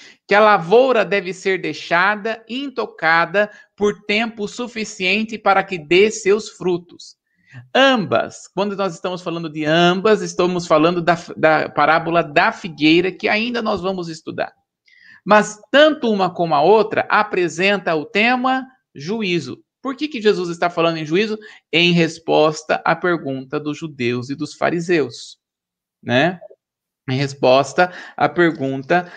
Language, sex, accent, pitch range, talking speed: Portuguese, male, Brazilian, 155-215 Hz, 135 wpm